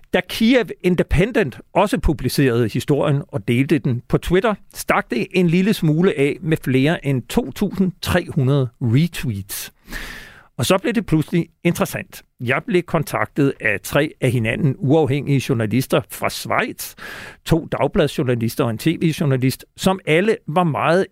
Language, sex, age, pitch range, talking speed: Danish, male, 50-69, 130-175 Hz, 135 wpm